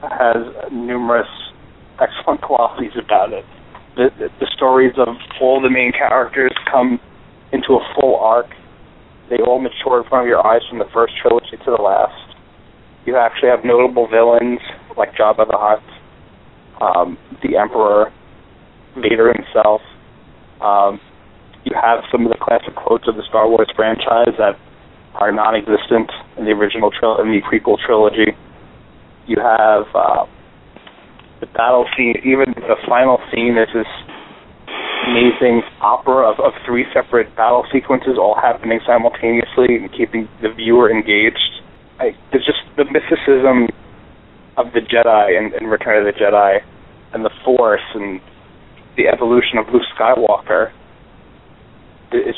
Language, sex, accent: English, male, American